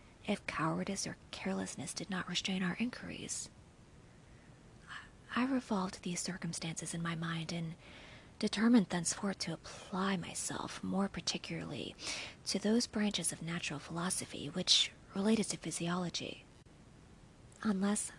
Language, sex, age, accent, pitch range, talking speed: English, female, 30-49, American, 165-205 Hz, 115 wpm